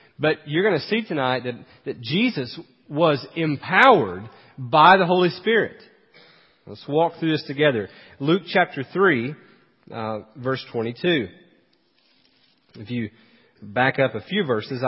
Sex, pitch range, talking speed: male, 130-170 Hz, 135 wpm